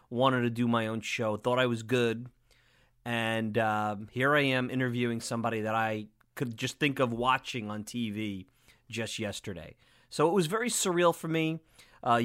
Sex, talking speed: male, 175 wpm